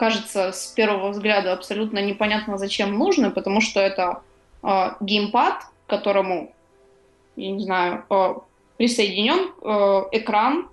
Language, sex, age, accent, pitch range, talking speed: Ukrainian, female, 20-39, native, 200-230 Hz, 125 wpm